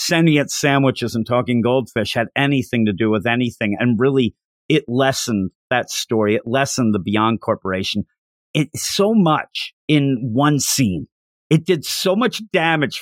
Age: 50-69